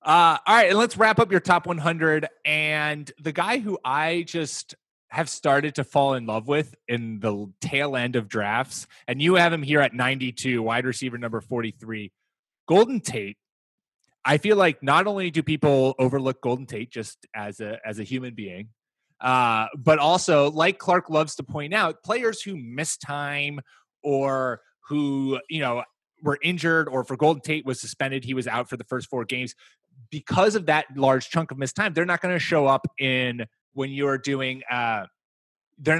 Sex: male